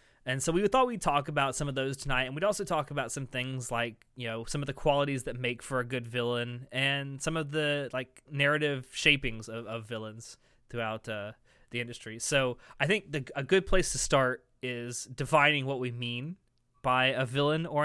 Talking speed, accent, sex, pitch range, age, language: 210 wpm, American, male, 120-150 Hz, 20-39, English